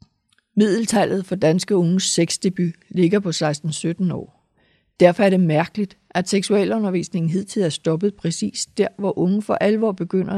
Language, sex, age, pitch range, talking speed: Danish, female, 60-79, 160-195 Hz, 145 wpm